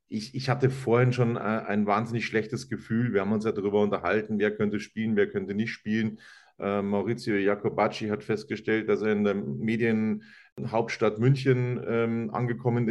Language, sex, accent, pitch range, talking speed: German, male, German, 105-125 Hz, 155 wpm